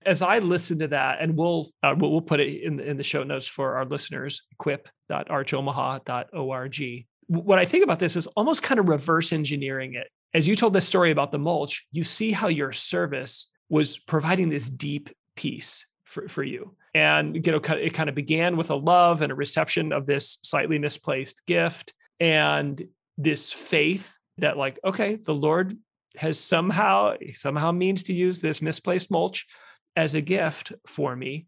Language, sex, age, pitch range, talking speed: English, male, 40-59, 145-185 Hz, 180 wpm